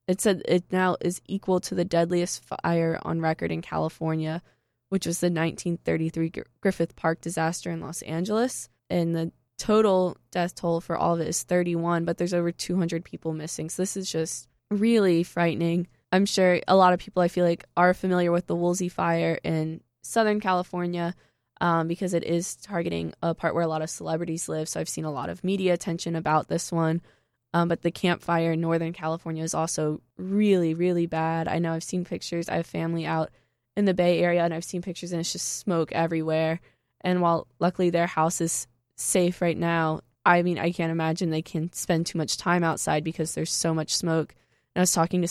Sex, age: female, 20-39